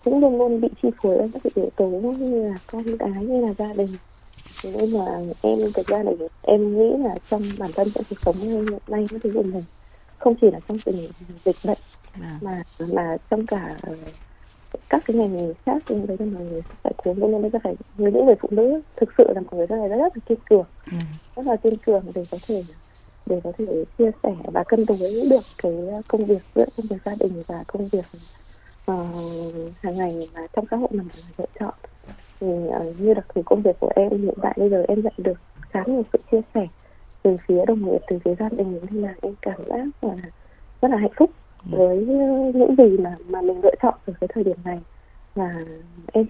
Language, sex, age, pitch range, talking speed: Vietnamese, female, 20-39, 180-230 Hz, 220 wpm